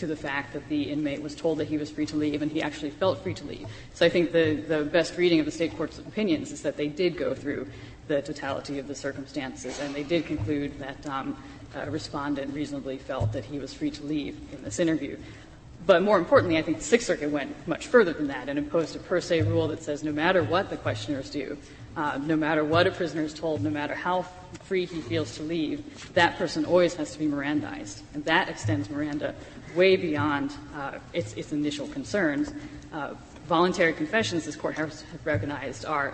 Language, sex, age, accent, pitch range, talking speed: English, female, 30-49, American, 145-170 Hz, 220 wpm